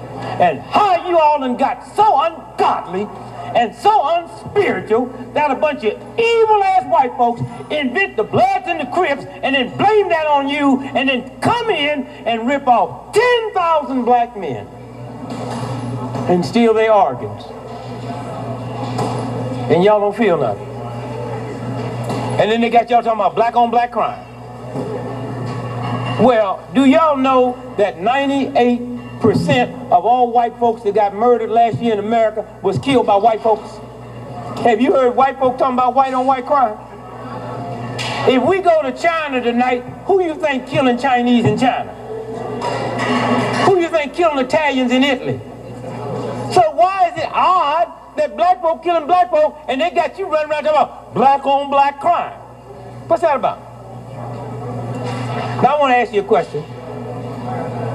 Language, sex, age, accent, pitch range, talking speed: English, male, 60-79, American, 220-325 Hz, 155 wpm